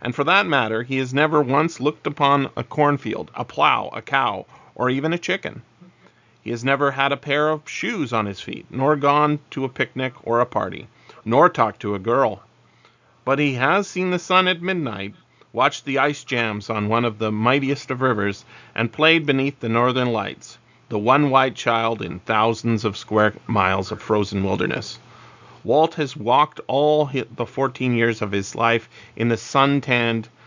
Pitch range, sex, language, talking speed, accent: 110-140 Hz, male, English, 185 wpm, American